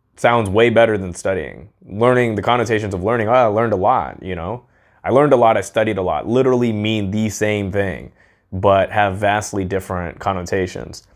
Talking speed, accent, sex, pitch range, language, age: 185 wpm, American, male, 95-105 Hz, English, 20-39